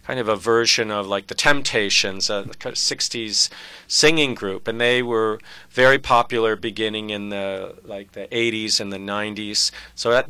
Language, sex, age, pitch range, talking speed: English, male, 40-59, 100-120 Hz, 165 wpm